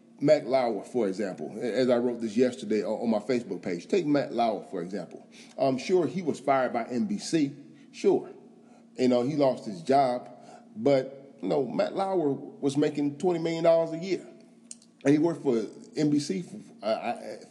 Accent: American